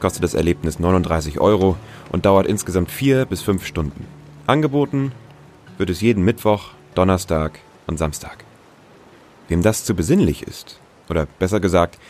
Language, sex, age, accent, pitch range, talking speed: German, male, 30-49, German, 85-115 Hz, 140 wpm